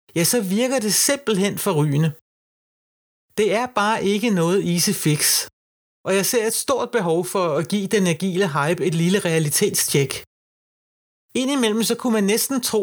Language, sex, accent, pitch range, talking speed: Danish, male, native, 170-215 Hz, 160 wpm